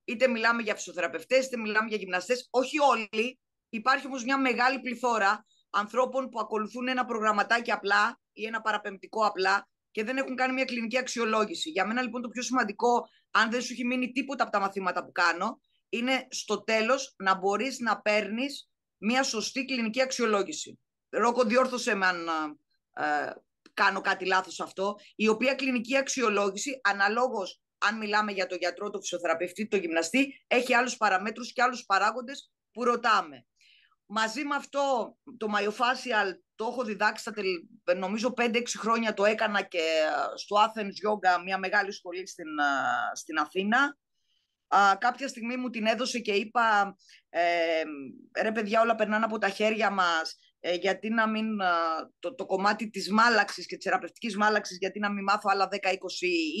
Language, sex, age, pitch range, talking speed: Greek, female, 20-39, 195-250 Hz, 155 wpm